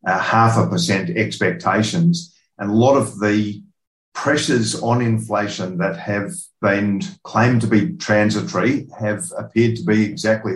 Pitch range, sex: 105-115 Hz, male